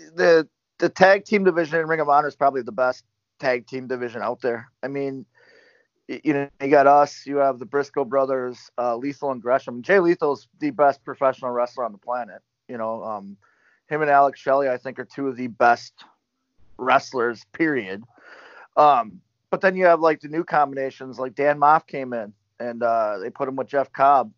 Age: 30-49